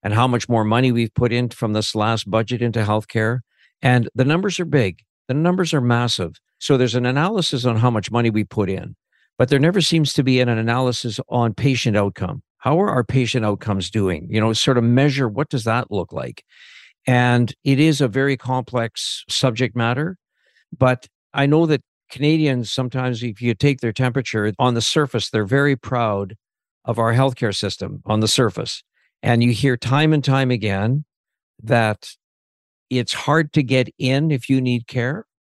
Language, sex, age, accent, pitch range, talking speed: English, male, 60-79, American, 110-135 Hz, 185 wpm